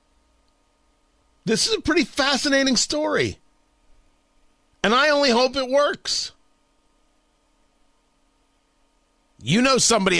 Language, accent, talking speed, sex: English, American, 90 wpm, male